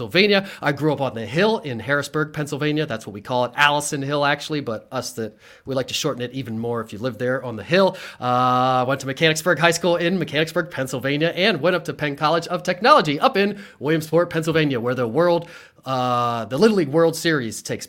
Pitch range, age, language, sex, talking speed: 125-165 Hz, 30-49, English, male, 220 wpm